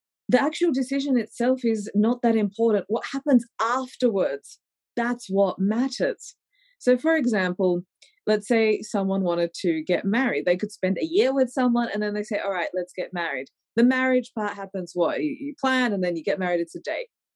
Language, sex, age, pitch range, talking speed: English, female, 20-39, 190-250 Hz, 190 wpm